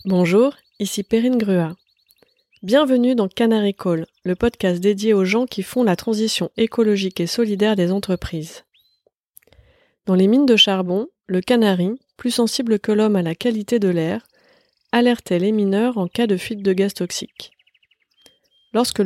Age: 30-49